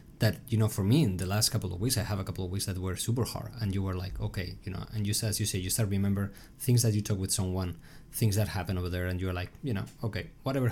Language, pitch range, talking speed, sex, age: English, 95-115 Hz, 300 wpm, male, 20-39